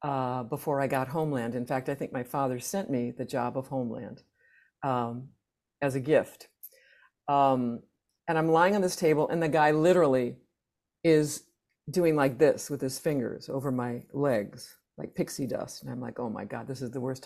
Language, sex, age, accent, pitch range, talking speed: English, female, 50-69, American, 130-155 Hz, 190 wpm